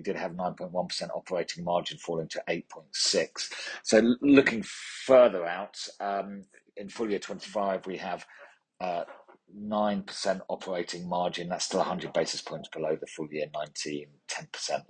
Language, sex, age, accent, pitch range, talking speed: English, male, 40-59, British, 90-105 Hz, 150 wpm